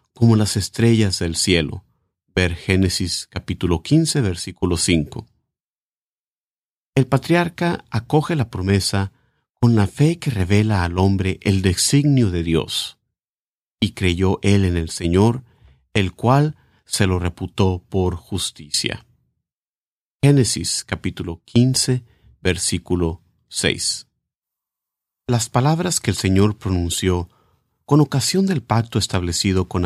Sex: male